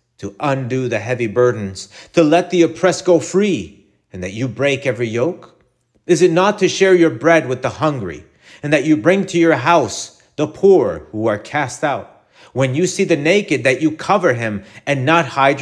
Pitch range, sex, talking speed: 125-165 Hz, male, 200 wpm